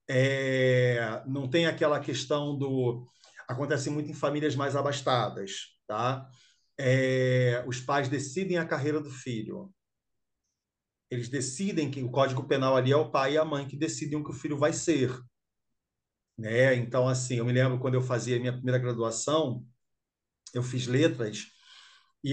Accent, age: Brazilian, 40-59